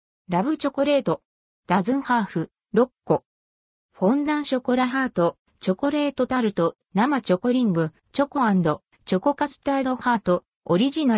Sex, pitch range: female, 185-265 Hz